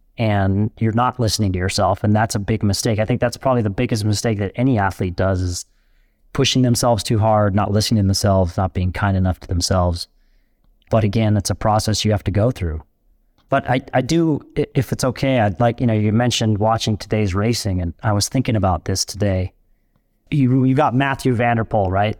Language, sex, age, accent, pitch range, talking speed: English, male, 30-49, American, 105-130 Hz, 205 wpm